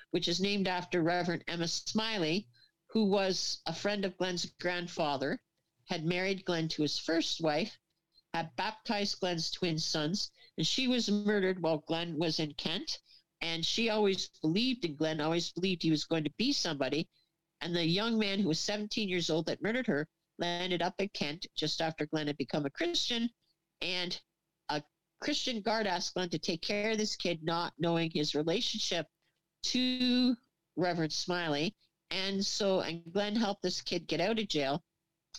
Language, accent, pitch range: English, American, 160-200 Hz